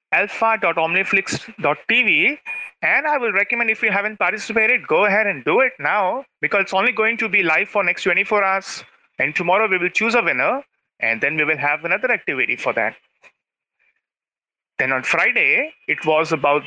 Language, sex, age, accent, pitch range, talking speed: English, male, 30-49, Indian, 155-210 Hz, 175 wpm